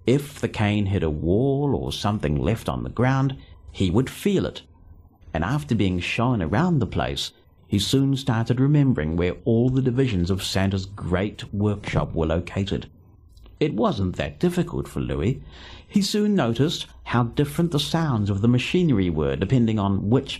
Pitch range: 85-130 Hz